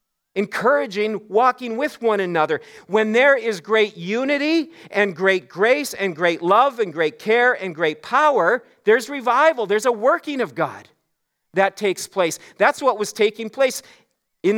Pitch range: 150-230 Hz